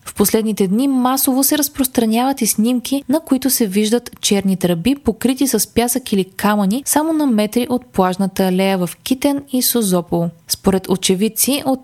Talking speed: 160 wpm